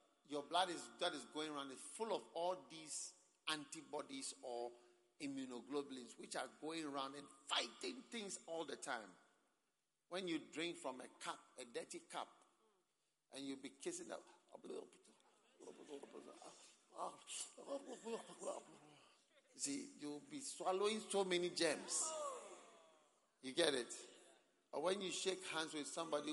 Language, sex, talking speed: English, male, 130 wpm